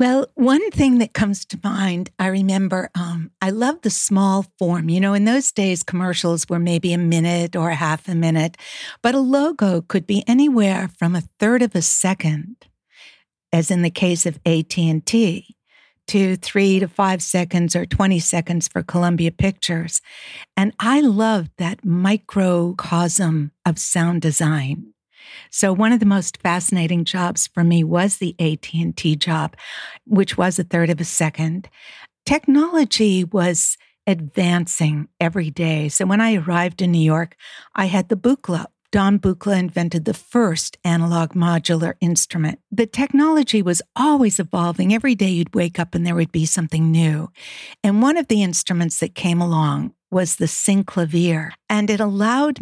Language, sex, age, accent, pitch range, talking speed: English, female, 60-79, American, 170-205 Hz, 160 wpm